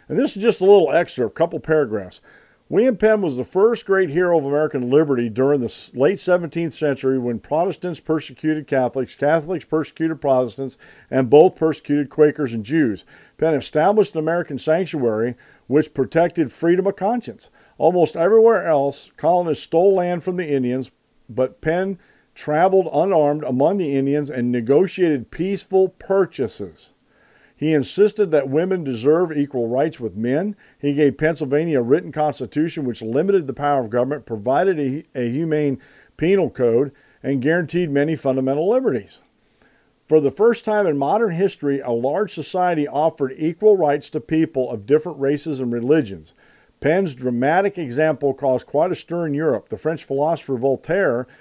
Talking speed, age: 155 wpm, 50-69